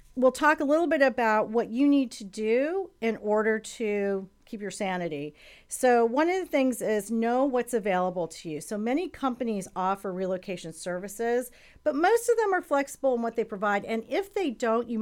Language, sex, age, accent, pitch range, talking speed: English, female, 40-59, American, 185-245 Hz, 195 wpm